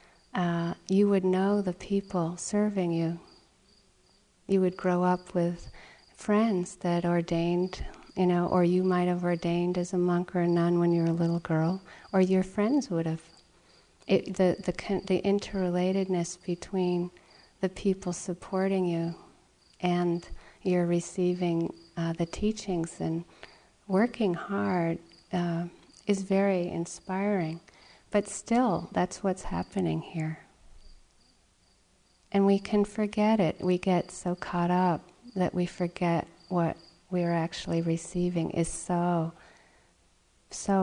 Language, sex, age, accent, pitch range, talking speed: English, female, 40-59, American, 175-195 Hz, 130 wpm